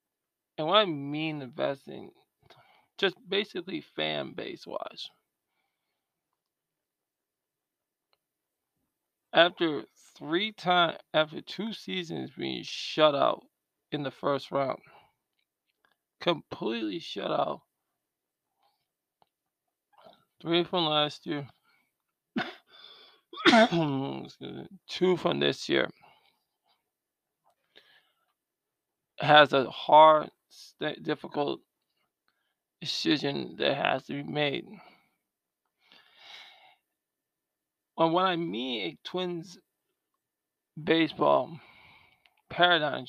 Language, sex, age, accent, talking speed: English, male, 20-39, American, 70 wpm